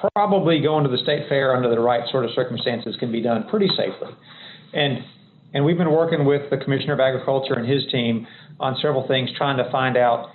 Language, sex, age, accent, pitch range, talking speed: English, male, 40-59, American, 125-150 Hz, 215 wpm